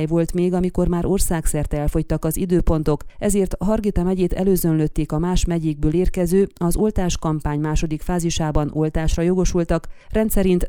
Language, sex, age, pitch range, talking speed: Hungarian, female, 30-49, 160-190 Hz, 135 wpm